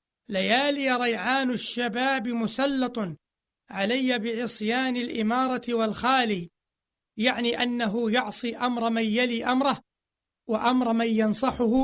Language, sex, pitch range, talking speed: Arabic, male, 220-250 Hz, 90 wpm